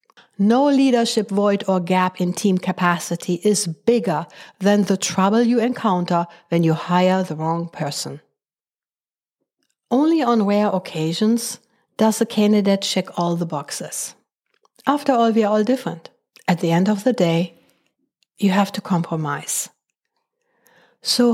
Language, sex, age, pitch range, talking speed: English, female, 60-79, 180-235 Hz, 140 wpm